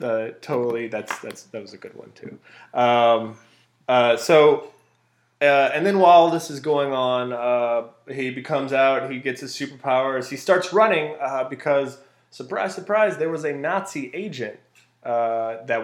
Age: 20-39